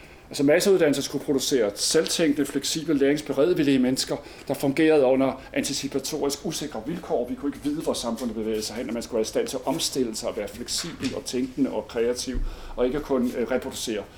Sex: male